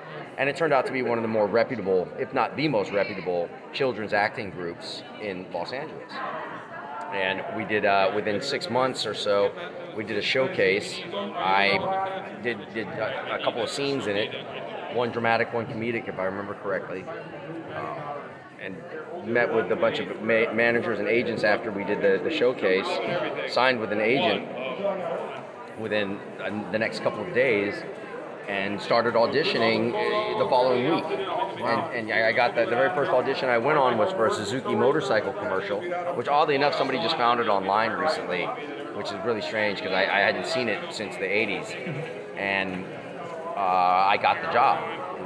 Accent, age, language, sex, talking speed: American, 30-49, English, male, 175 wpm